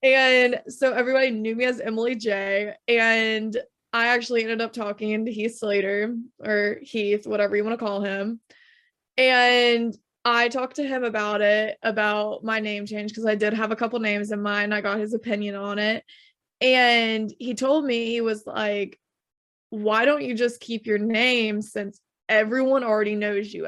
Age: 20-39